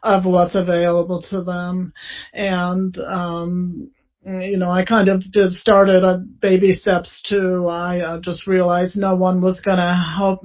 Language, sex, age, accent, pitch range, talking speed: English, male, 40-59, American, 180-195 Hz, 155 wpm